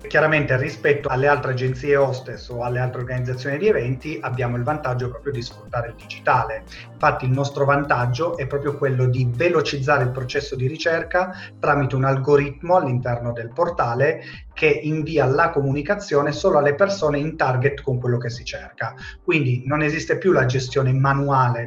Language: Italian